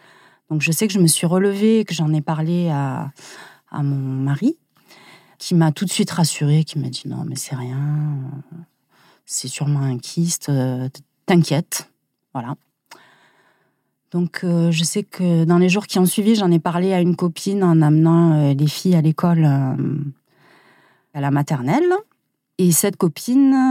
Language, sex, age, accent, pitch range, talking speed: French, female, 30-49, French, 150-185 Hz, 175 wpm